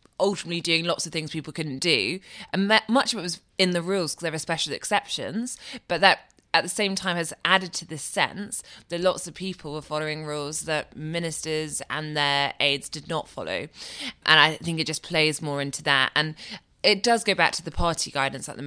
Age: 20-39